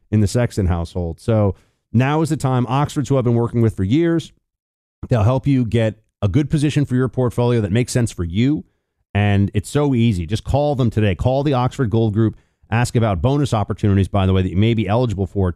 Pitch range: 100-140 Hz